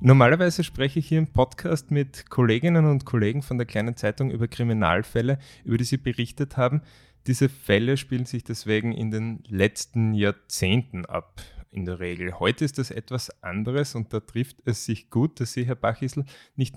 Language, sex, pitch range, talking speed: German, male, 100-130 Hz, 180 wpm